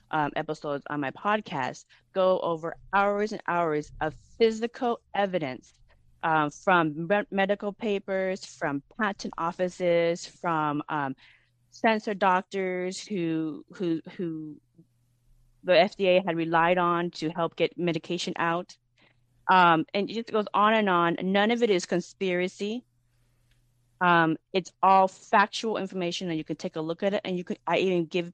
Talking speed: 150 wpm